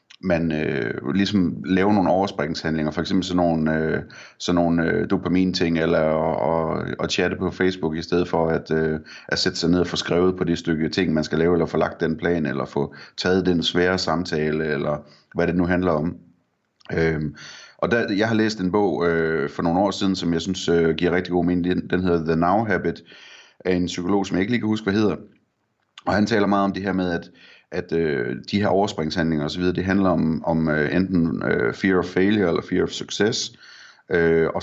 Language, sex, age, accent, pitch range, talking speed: Danish, male, 30-49, native, 80-95 Hz, 215 wpm